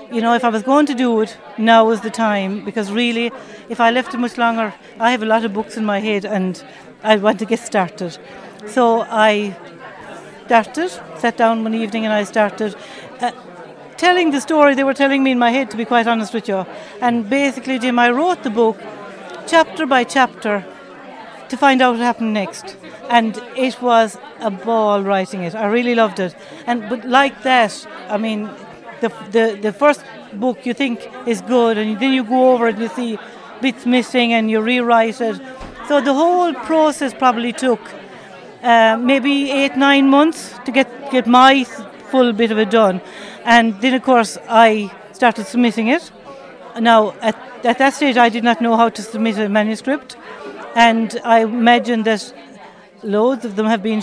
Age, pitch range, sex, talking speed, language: 60-79, 220-255 Hz, female, 190 wpm, English